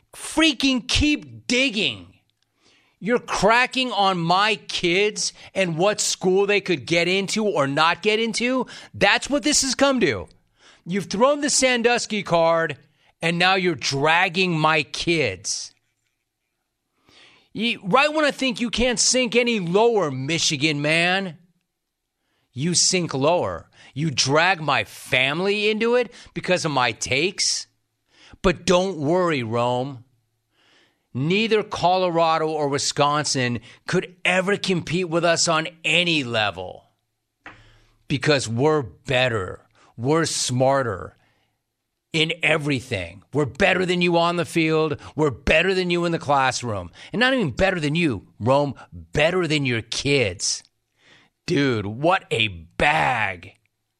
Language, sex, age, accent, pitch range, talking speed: English, male, 30-49, American, 130-190 Hz, 125 wpm